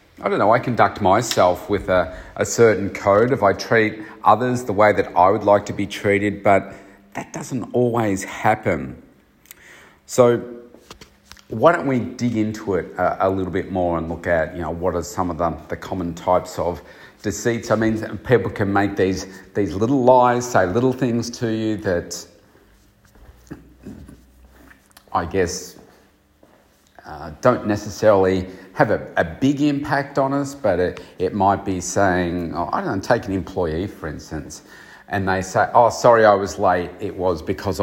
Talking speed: 175 wpm